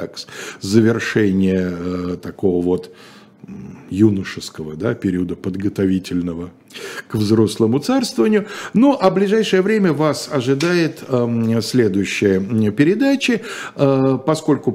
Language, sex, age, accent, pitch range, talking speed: Russian, male, 50-69, native, 95-140 Hz, 90 wpm